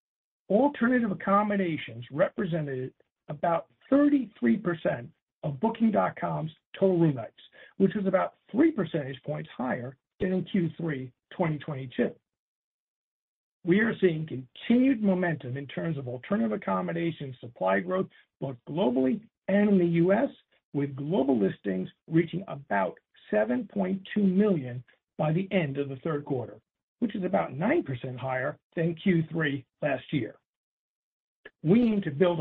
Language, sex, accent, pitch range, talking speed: English, male, American, 140-205 Hz, 120 wpm